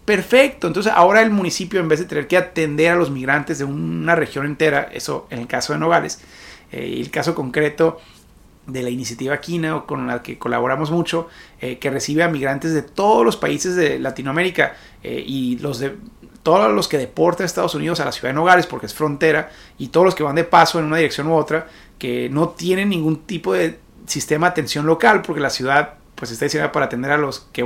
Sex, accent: male, Mexican